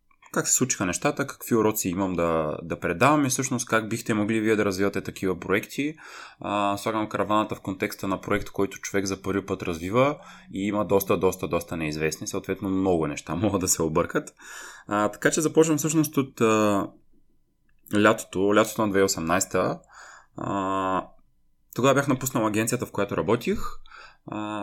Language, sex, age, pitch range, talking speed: Bulgarian, male, 20-39, 95-125 Hz, 150 wpm